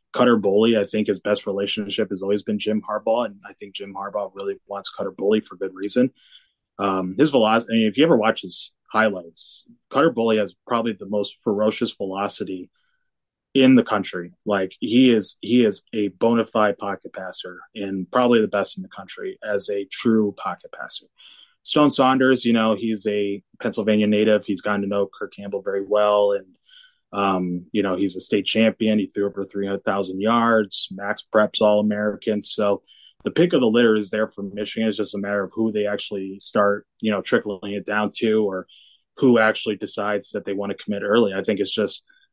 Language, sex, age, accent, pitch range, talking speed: English, male, 20-39, American, 100-115 Hz, 195 wpm